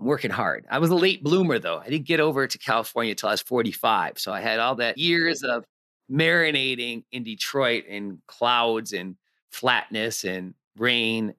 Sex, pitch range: male, 115-150 Hz